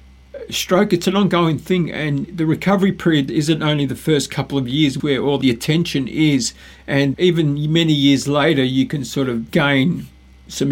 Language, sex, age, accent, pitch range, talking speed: English, male, 50-69, Australian, 130-155 Hz, 180 wpm